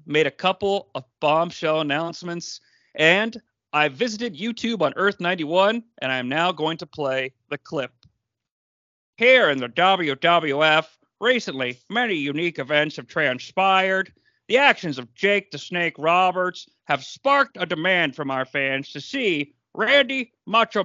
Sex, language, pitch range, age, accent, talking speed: male, English, 140-210 Hz, 40-59, American, 145 wpm